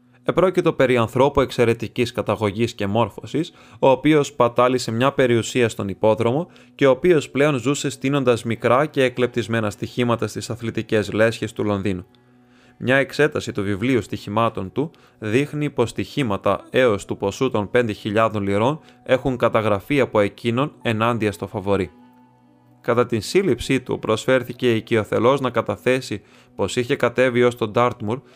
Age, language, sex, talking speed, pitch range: 20-39, Greek, male, 140 wpm, 110-130 Hz